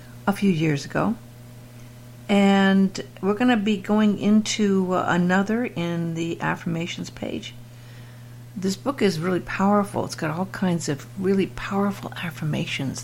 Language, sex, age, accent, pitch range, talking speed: English, female, 60-79, American, 120-190 Hz, 135 wpm